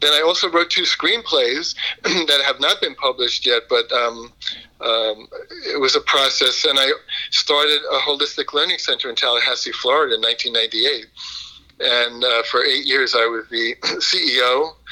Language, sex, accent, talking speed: English, male, American, 160 wpm